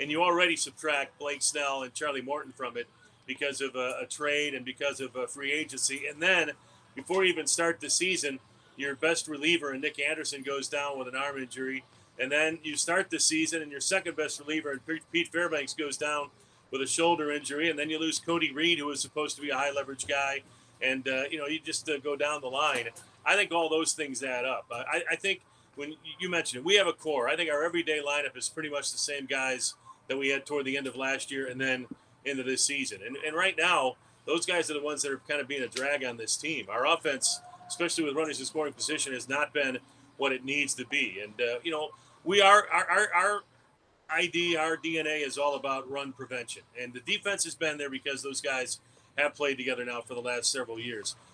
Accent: American